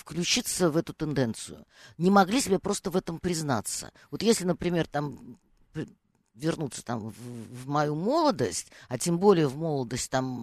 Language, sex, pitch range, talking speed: Russian, female, 150-195 Hz, 140 wpm